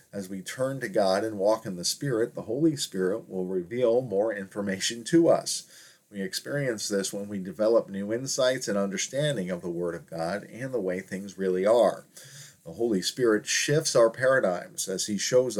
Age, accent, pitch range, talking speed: 40-59, American, 95-120 Hz, 190 wpm